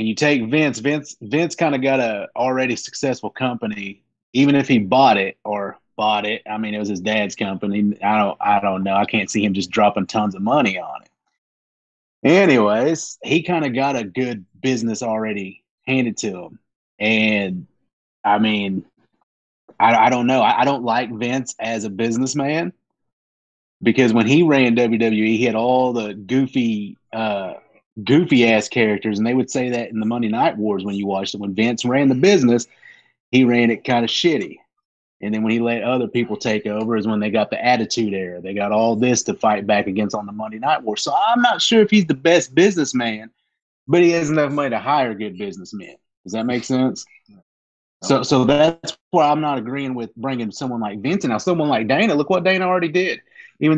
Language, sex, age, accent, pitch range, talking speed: English, male, 30-49, American, 105-140 Hz, 205 wpm